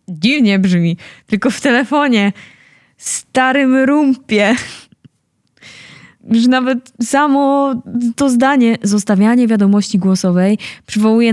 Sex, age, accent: female, 10-29, native